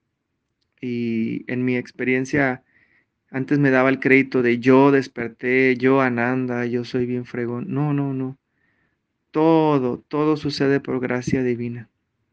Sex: male